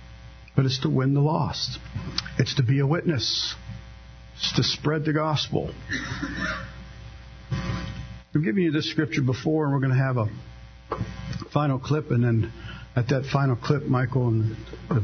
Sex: male